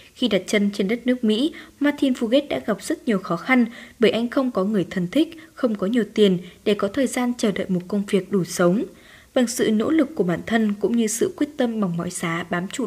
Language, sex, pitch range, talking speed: Vietnamese, female, 185-245 Hz, 250 wpm